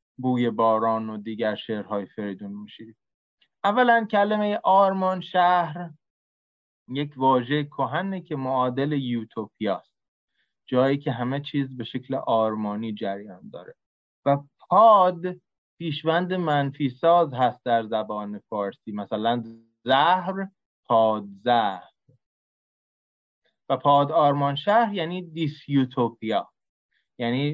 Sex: male